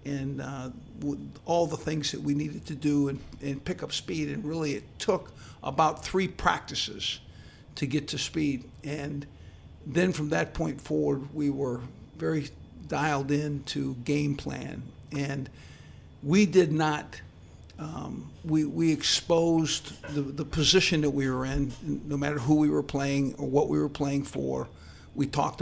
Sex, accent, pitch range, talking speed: male, American, 130-150 Hz, 165 wpm